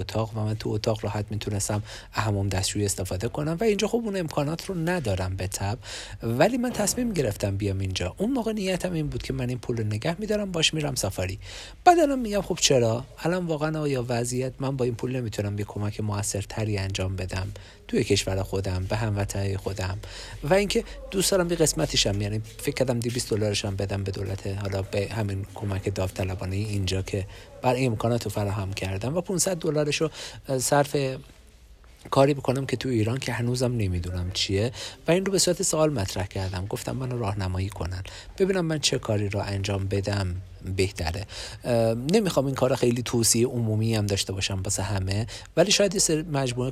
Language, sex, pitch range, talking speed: Persian, male, 100-140 Hz, 180 wpm